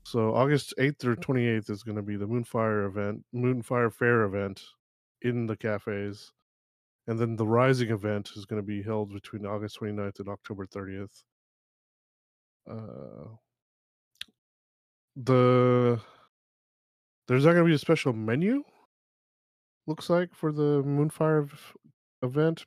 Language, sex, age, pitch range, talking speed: English, male, 20-39, 105-130 Hz, 140 wpm